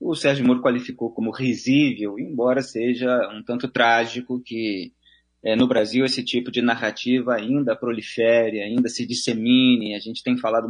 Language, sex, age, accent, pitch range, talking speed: Portuguese, male, 20-39, Brazilian, 120-165 Hz, 155 wpm